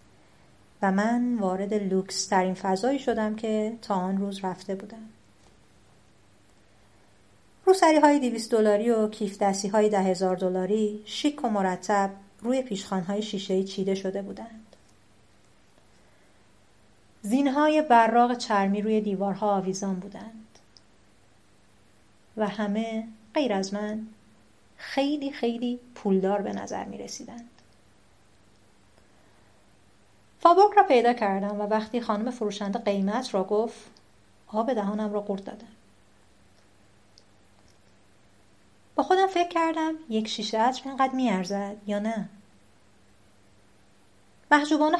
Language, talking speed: Persian, 110 wpm